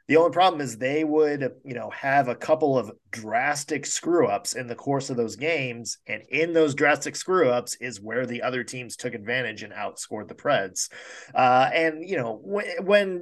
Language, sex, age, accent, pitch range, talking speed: English, male, 20-39, American, 115-150 Hz, 190 wpm